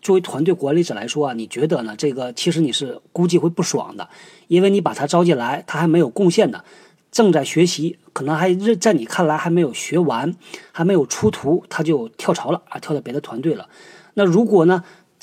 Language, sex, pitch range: Chinese, male, 150-185 Hz